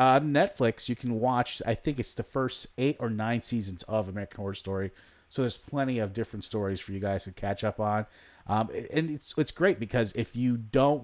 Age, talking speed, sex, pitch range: 30-49, 215 wpm, male, 100-130 Hz